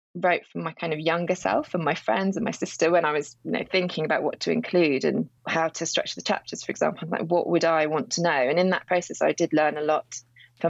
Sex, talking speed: female, 270 wpm